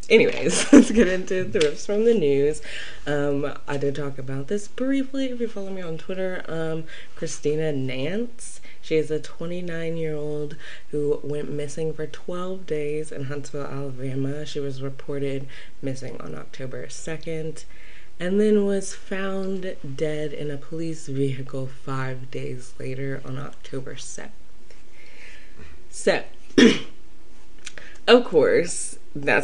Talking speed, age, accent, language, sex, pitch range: 130 wpm, 20-39, American, English, female, 135-165 Hz